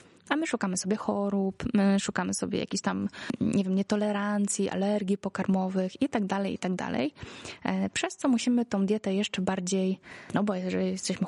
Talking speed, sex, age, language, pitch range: 170 wpm, female, 20-39, Polish, 190-240 Hz